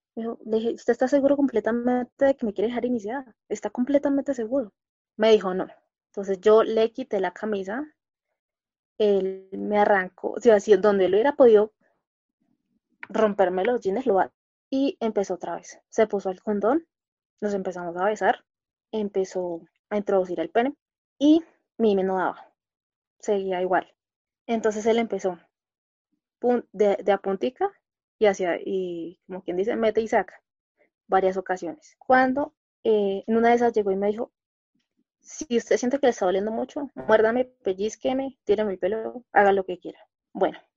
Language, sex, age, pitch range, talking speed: Spanish, female, 20-39, 195-245 Hz, 155 wpm